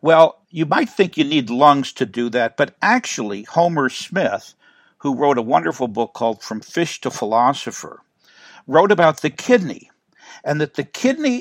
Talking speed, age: 170 wpm, 60-79